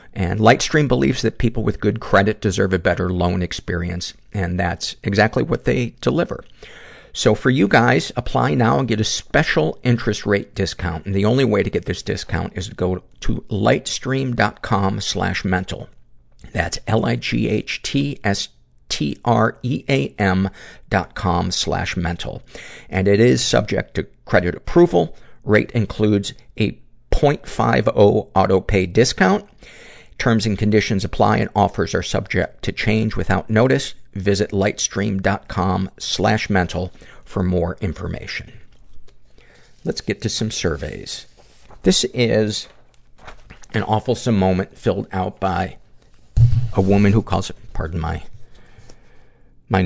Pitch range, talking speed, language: 90-110 Hz, 140 wpm, English